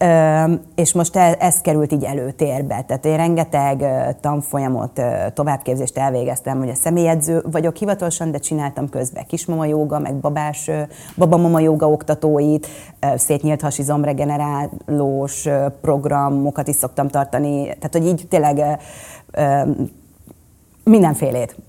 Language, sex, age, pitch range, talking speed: Hungarian, female, 30-49, 145-175 Hz, 100 wpm